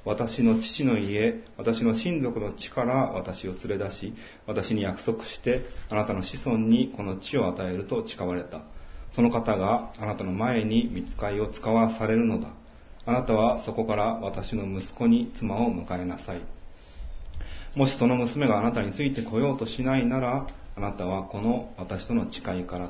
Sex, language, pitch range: male, Japanese, 90-115 Hz